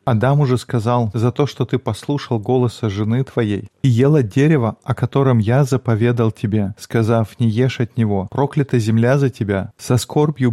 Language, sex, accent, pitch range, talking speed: Russian, male, native, 110-130 Hz, 170 wpm